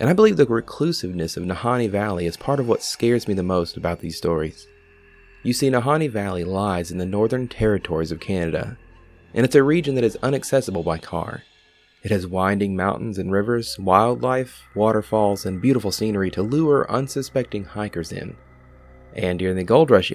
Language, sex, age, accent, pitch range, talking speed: English, male, 30-49, American, 90-115 Hz, 180 wpm